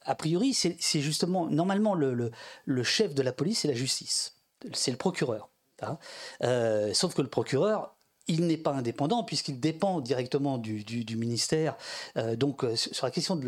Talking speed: 185 wpm